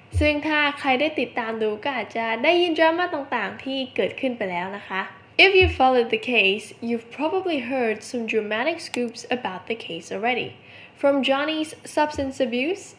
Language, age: Thai, 10-29